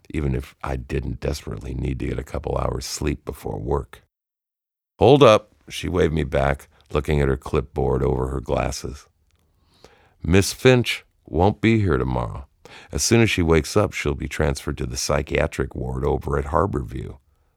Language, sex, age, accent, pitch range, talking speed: English, male, 50-69, American, 70-95 Hz, 165 wpm